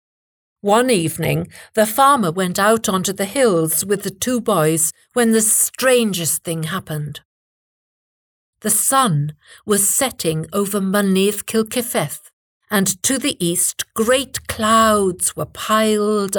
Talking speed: 120 wpm